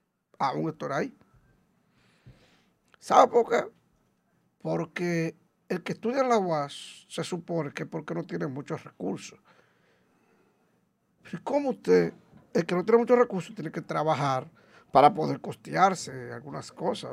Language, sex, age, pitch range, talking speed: Spanish, male, 50-69, 165-255 Hz, 135 wpm